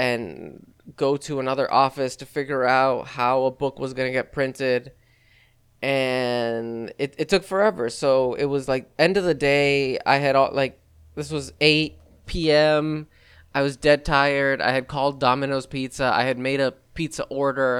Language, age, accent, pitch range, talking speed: English, 20-39, American, 125-155 Hz, 175 wpm